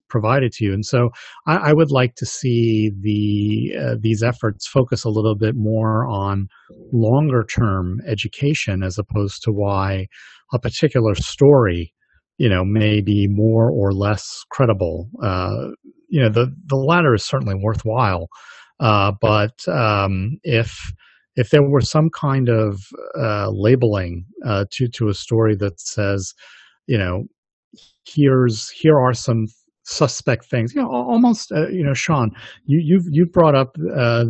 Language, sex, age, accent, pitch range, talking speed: English, male, 40-59, American, 105-130 Hz, 155 wpm